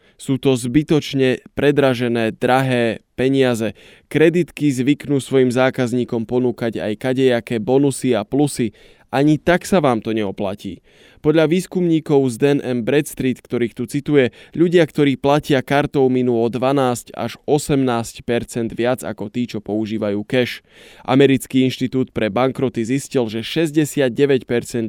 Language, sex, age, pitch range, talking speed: Slovak, male, 20-39, 115-140 Hz, 130 wpm